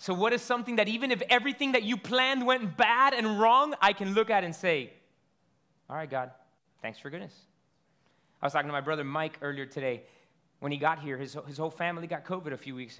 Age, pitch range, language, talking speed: 30-49, 155-210 Hz, English, 225 wpm